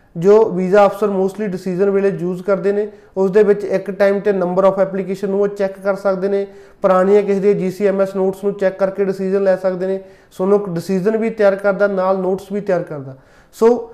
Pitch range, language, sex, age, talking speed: 185-205 Hz, Punjabi, male, 30-49, 210 wpm